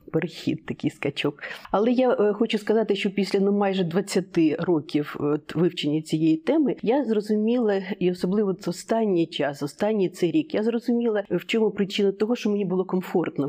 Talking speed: 160 wpm